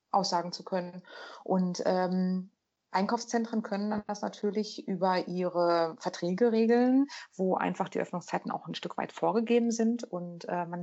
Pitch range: 175-215 Hz